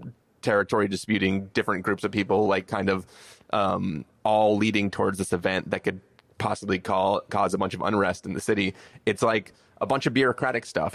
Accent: American